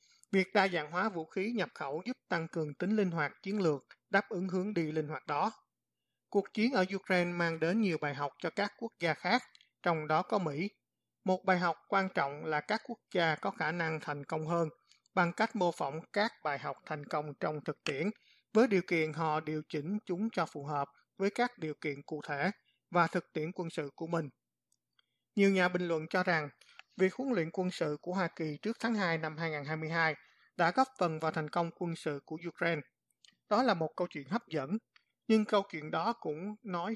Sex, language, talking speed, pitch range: male, Vietnamese, 215 wpm, 155-195 Hz